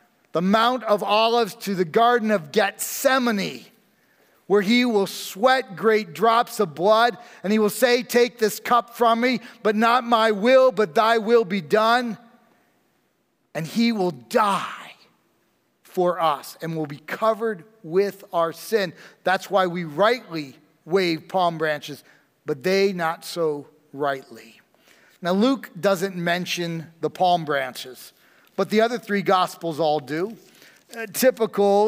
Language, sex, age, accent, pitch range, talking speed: English, male, 40-59, American, 165-220 Hz, 145 wpm